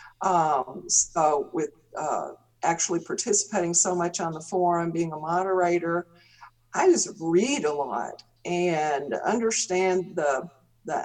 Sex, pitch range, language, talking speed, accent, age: female, 170-215 Hz, English, 125 wpm, American, 50-69